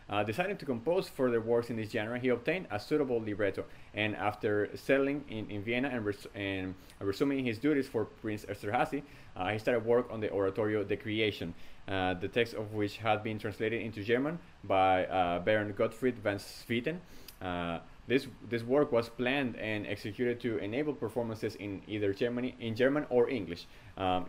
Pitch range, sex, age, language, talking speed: 100-125 Hz, male, 30-49, English, 180 wpm